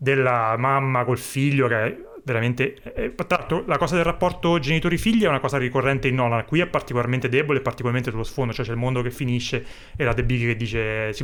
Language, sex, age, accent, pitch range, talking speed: Italian, male, 30-49, native, 115-140 Hz, 215 wpm